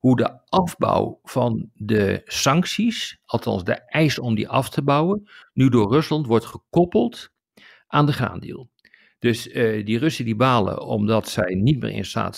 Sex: male